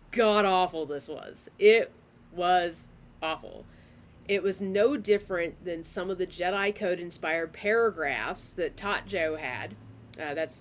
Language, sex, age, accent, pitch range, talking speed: English, female, 30-49, American, 150-210 Hz, 140 wpm